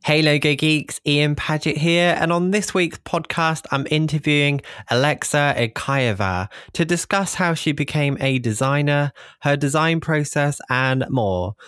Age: 20-39